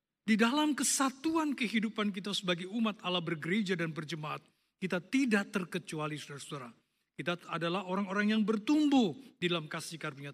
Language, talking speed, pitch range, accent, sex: Indonesian, 140 wpm, 160-215 Hz, native, male